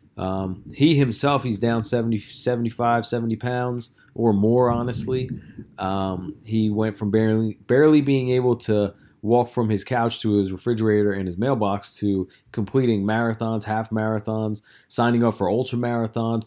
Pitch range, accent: 105-125 Hz, American